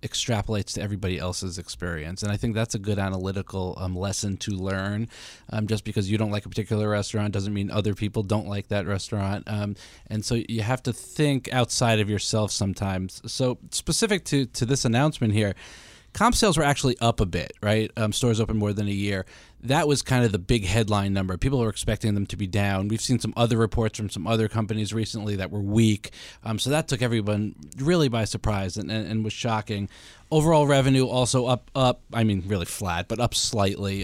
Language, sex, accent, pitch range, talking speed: English, male, American, 100-125 Hz, 210 wpm